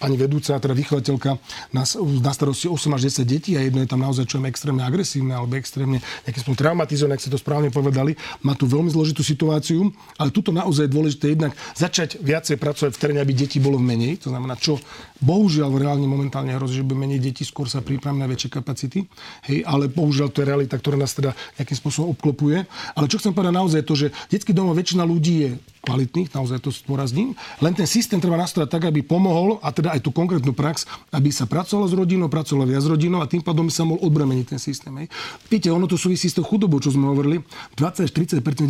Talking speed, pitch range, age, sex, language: 210 wpm, 135-165 Hz, 40-59, male, Slovak